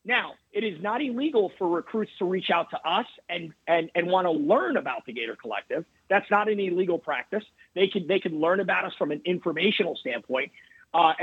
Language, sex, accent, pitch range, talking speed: English, male, American, 175-220 Hz, 210 wpm